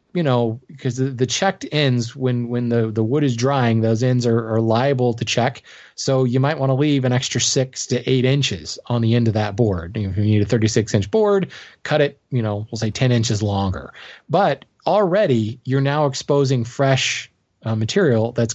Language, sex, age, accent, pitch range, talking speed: English, male, 20-39, American, 110-135 Hz, 205 wpm